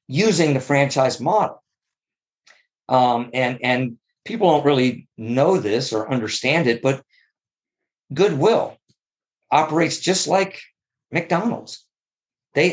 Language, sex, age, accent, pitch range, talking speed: English, male, 50-69, American, 130-185 Hz, 105 wpm